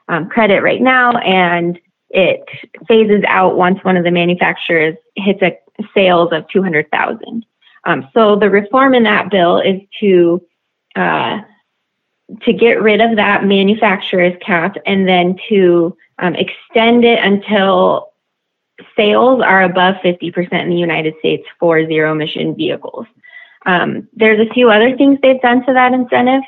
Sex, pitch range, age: female, 180-220 Hz, 20-39